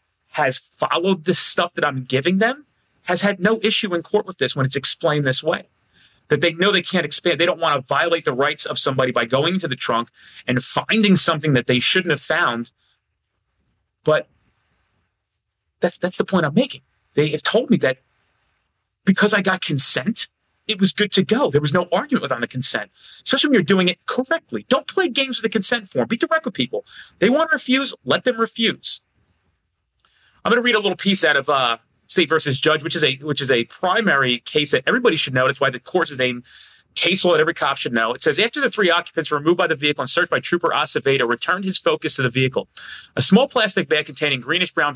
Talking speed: 220 wpm